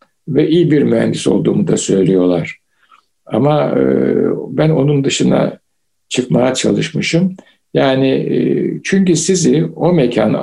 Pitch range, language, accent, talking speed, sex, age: 120-170 Hz, Turkish, native, 115 wpm, male, 60-79